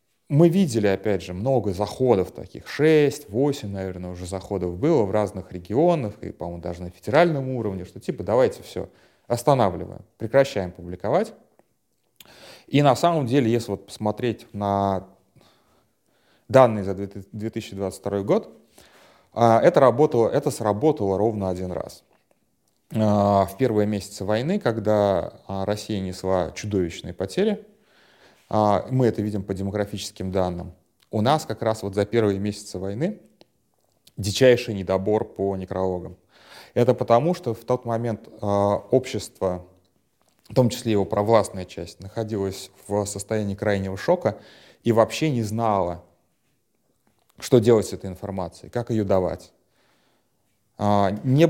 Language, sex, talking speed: Russian, male, 120 wpm